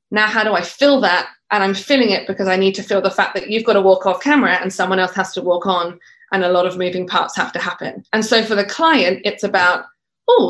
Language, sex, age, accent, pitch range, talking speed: English, female, 20-39, British, 190-245 Hz, 275 wpm